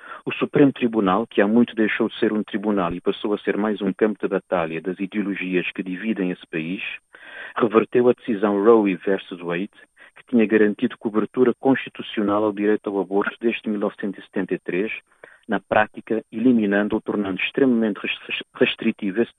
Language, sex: Portuguese, male